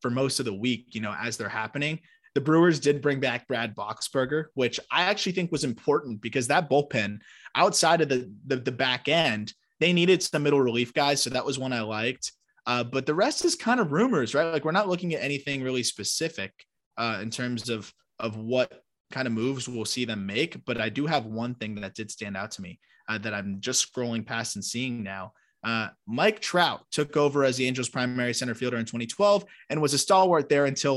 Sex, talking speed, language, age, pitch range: male, 225 wpm, English, 20-39, 120-160 Hz